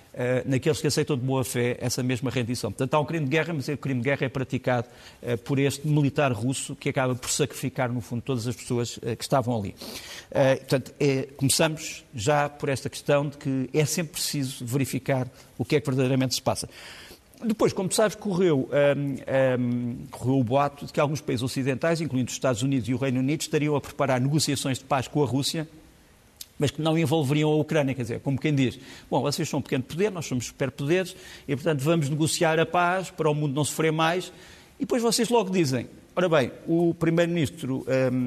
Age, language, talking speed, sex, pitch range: 50-69, Portuguese, 215 wpm, male, 130-160 Hz